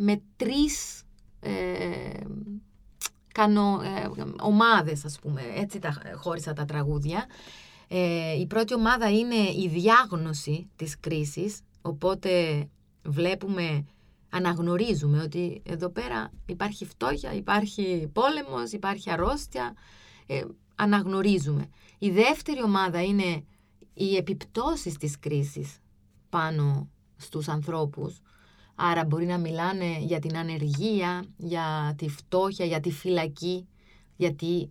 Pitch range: 155-200 Hz